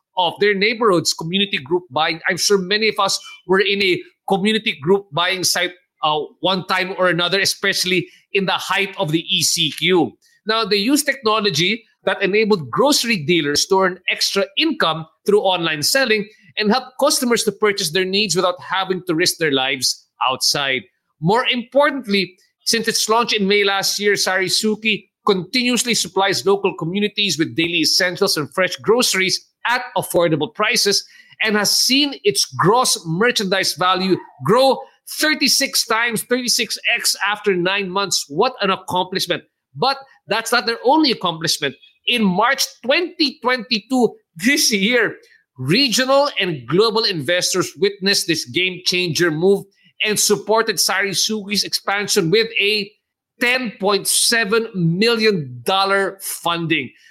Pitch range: 180-225 Hz